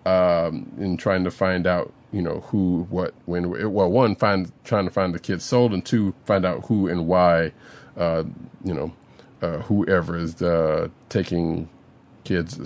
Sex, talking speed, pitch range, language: male, 170 wpm, 90-135 Hz, English